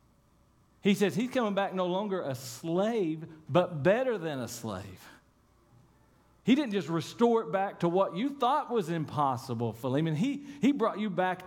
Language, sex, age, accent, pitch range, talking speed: English, male, 40-59, American, 125-185 Hz, 165 wpm